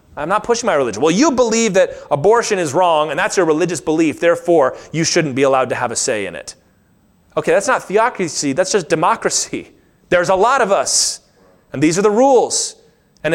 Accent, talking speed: American, 205 wpm